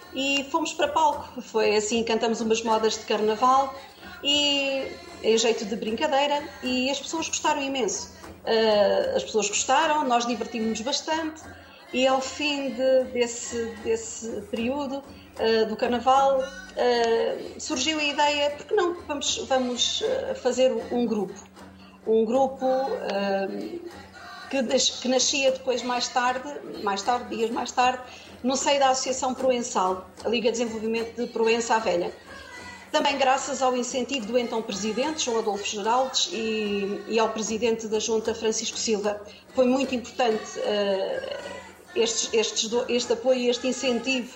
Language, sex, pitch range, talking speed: Portuguese, female, 225-275 Hz, 145 wpm